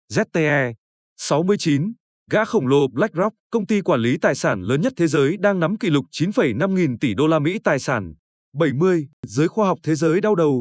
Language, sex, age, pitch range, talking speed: Vietnamese, male, 20-39, 145-200 Hz, 205 wpm